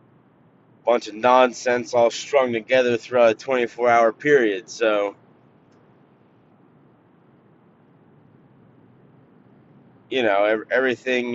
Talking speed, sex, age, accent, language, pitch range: 80 wpm, male, 30-49, American, English, 115-145 Hz